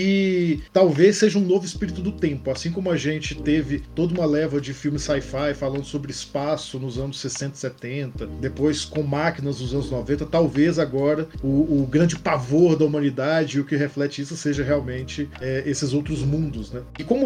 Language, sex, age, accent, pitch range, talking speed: Portuguese, male, 40-59, Brazilian, 145-200 Hz, 190 wpm